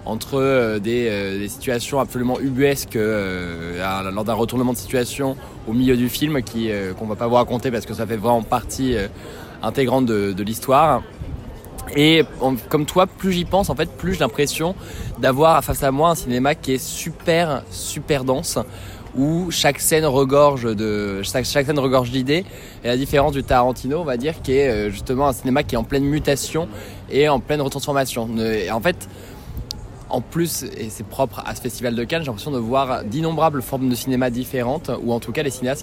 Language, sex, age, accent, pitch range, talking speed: French, male, 20-39, French, 110-140 Hz, 195 wpm